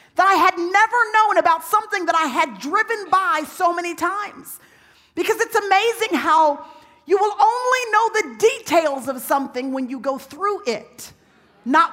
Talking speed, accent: 165 wpm, American